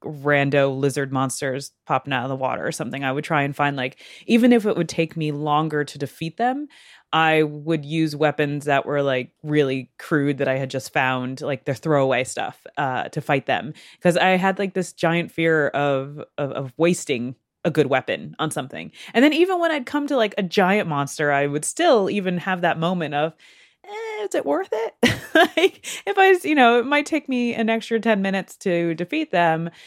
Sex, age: female, 20-39